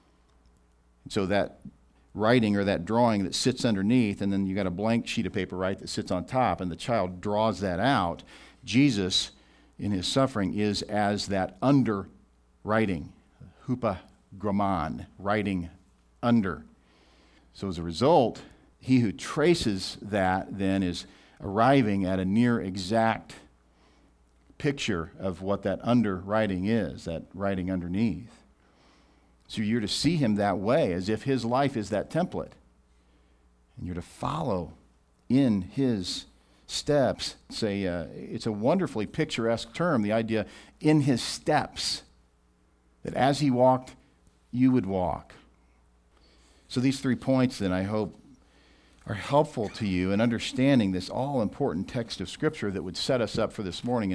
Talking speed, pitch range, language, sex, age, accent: 145 wpm, 80-115 Hz, English, male, 50-69, American